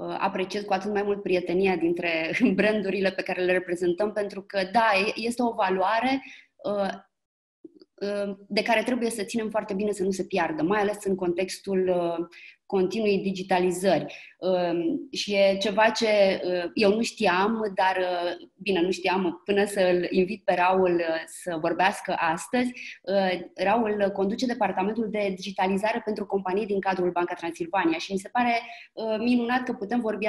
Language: Romanian